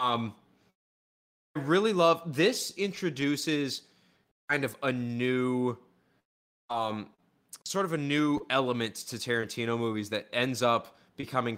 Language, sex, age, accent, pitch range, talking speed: English, male, 20-39, American, 115-140 Hz, 120 wpm